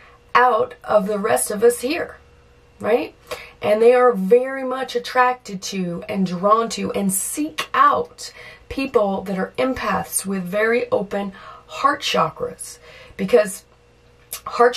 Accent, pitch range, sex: American, 170-220 Hz, female